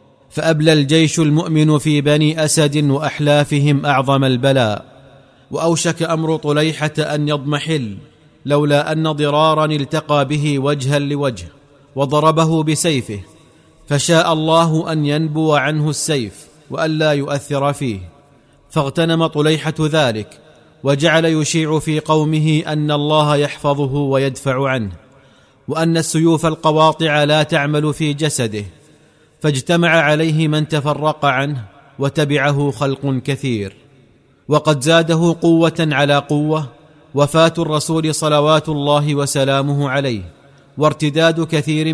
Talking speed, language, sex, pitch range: 105 wpm, Arabic, male, 140-155 Hz